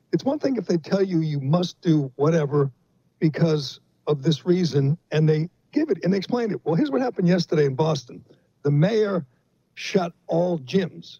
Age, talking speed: 60-79, 190 wpm